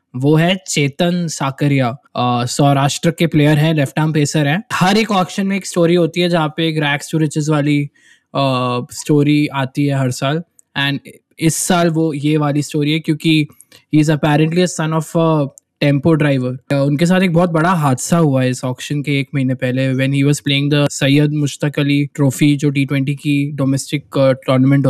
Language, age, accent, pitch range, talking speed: Hindi, 20-39, native, 135-155 Hz, 115 wpm